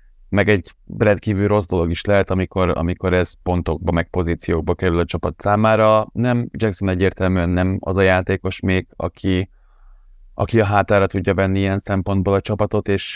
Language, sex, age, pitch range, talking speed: Hungarian, male, 30-49, 85-100 Hz, 165 wpm